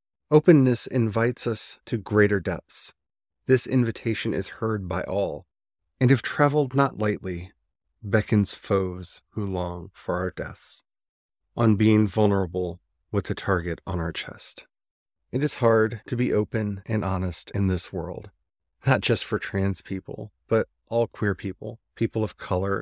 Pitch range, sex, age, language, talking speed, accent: 90-110 Hz, male, 30-49, English, 145 wpm, American